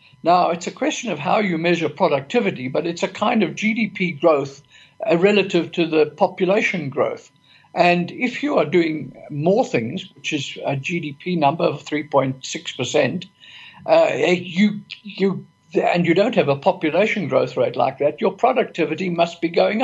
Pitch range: 150-195 Hz